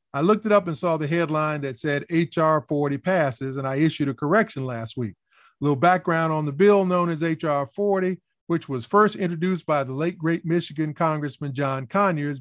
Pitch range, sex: 140-175 Hz, male